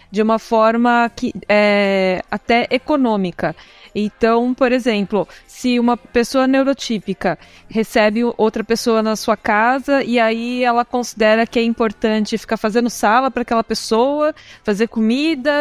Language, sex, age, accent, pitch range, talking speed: Portuguese, female, 20-39, Brazilian, 210-250 Hz, 125 wpm